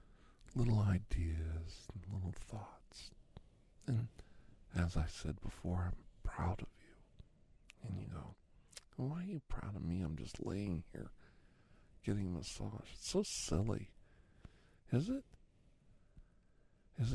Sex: male